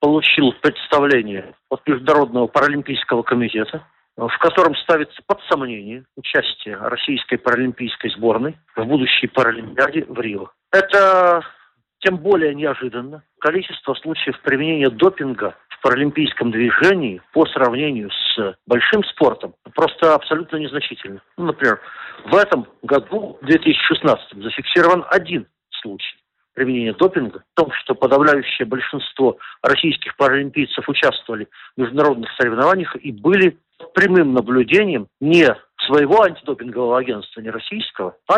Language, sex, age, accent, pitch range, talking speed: Russian, male, 50-69, native, 125-165 Hz, 115 wpm